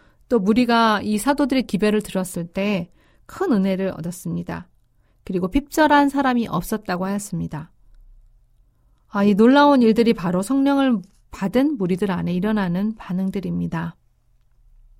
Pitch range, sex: 175-230 Hz, female